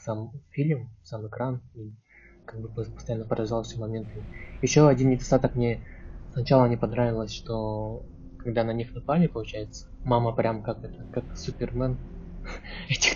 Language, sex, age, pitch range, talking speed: Russian, male, 20-39, 110-125 Hz, 135 wpm